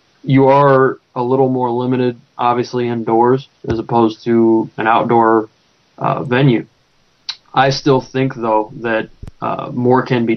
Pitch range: 115-130 Hz